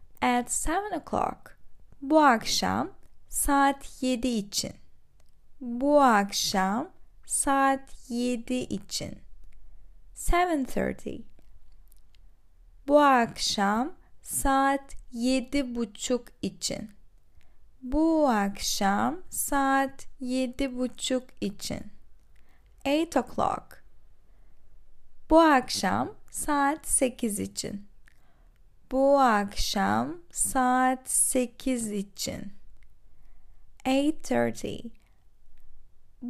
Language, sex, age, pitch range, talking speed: Turkish, female, 10-29, 195-270 Hz, 65 wpm